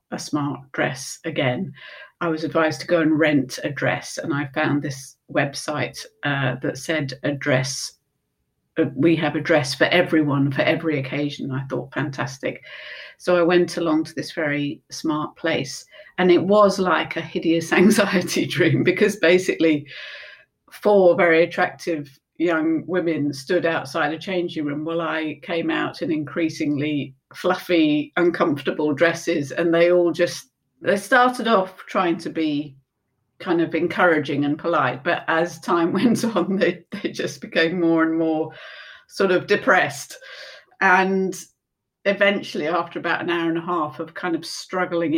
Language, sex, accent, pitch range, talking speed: English, female, British, 150-175 Hz, 155 wpm